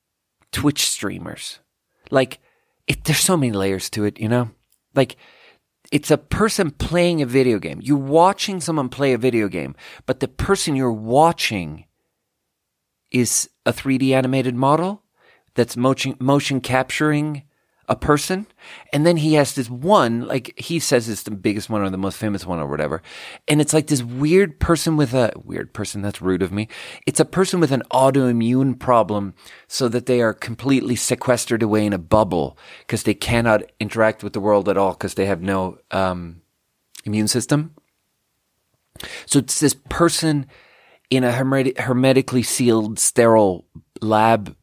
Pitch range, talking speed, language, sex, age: 105-135 Hz, 160 wpm, English, male, 30-49